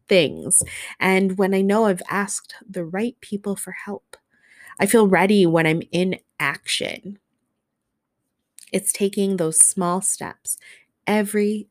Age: 20-39